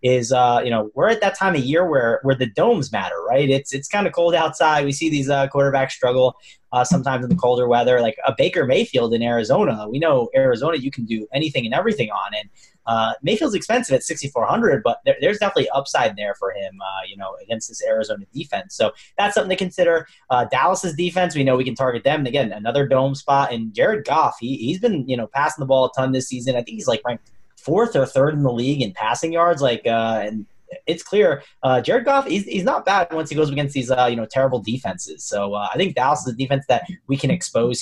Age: 20-39